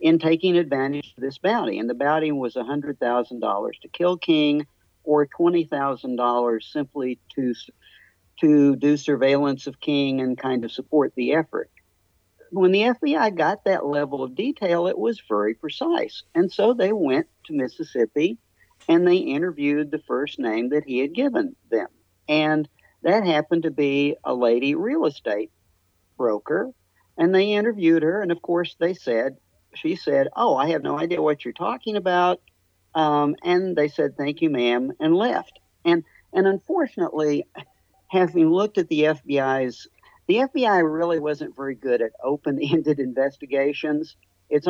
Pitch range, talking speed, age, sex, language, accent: 135-180 Hz, 155 wpm, 50-69, male, English, American